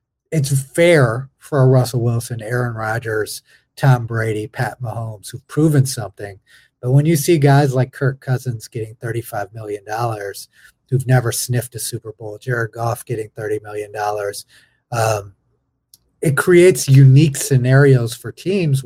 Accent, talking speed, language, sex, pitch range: American, 140 wpm, English, male, 115-140 Hz